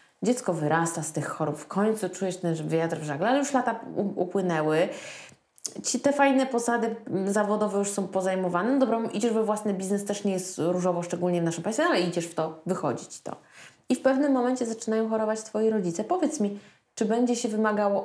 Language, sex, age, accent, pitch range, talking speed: Polish, female, 20-39, native, 155-210 Hz, 190 wpm